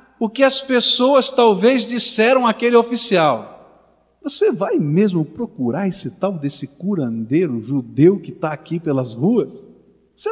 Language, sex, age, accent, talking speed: Portuguese, male, 50-69, Brazilian, 135 wpm